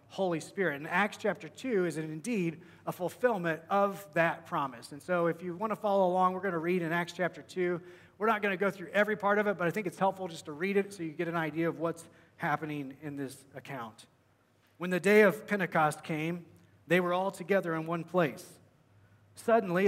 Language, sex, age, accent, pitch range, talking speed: English, male, 30-49, American, 150-185 Hz, 220 wpm